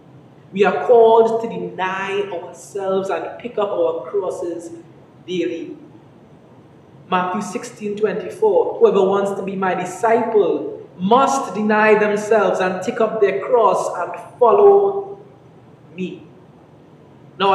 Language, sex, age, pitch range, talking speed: English, male, 20-39, 185-250 Hz, 115 wpm